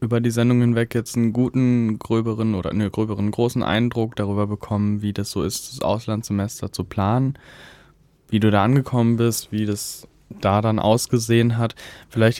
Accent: German